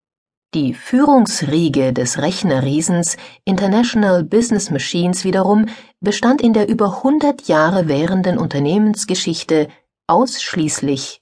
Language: German